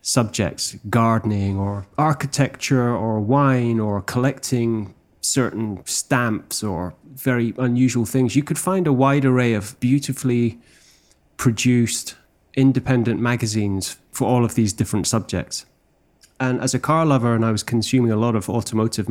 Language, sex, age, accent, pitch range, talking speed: English, male, 30-49, British, 105-130 Hz, 140 wpm